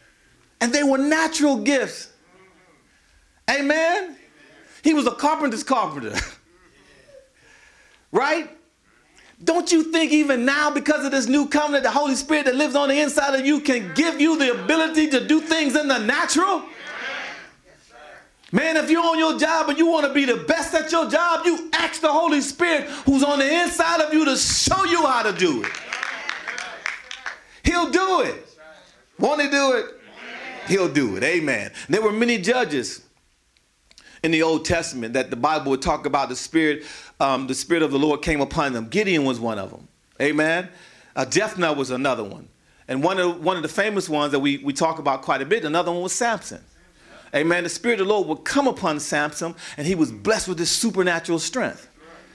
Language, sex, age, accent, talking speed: English, male, 40-59, American, 185 wpm